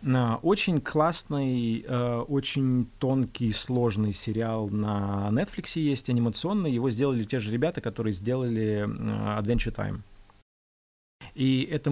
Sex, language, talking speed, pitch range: male, Russian, 115 wpm, 120-155 Hz